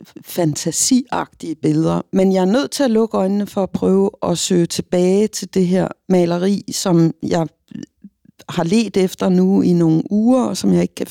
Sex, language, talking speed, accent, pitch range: female, Danish, 180 wpm, native, 160-205 Hz